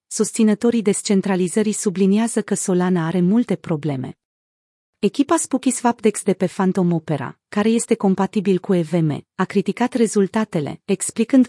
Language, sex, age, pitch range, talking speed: Romanian, female, 40-59, 175-220 Hz, 125 wpm